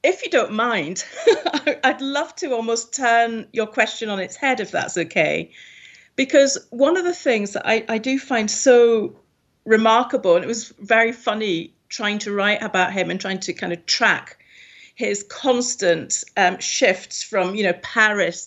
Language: English